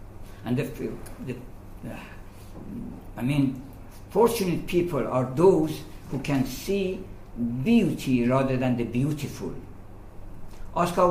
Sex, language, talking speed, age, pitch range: male, English, 95 wpm, 60-79, 100-145 Hz